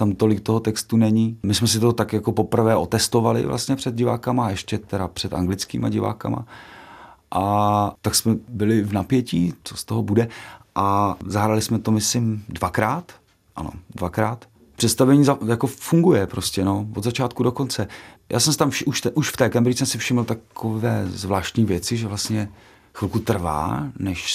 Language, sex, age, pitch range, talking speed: Czech, male, 40-59, 95-115 Hz, 175 wpm